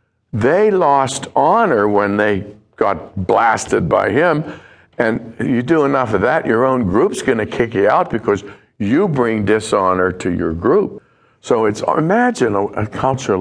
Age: 60-79